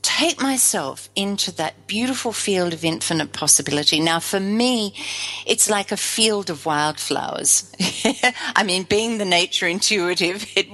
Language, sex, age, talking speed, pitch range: English, female, 50-69, 140 wpm, 165-235 Hz